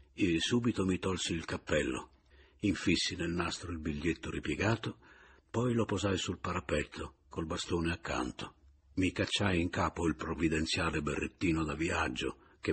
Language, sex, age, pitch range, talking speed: Italian, male, 60-79, 85-120 Hz, 140 wpm